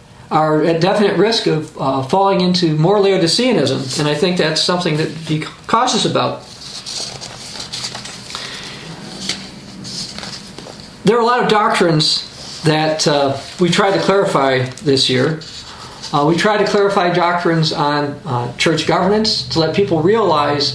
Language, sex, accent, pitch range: English, male, American, 150-190 Hz